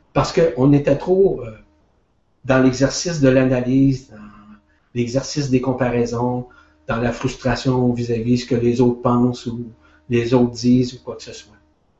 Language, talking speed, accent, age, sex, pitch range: French, 160 wpm, Canadian, 50-69, male, 125-150 Hz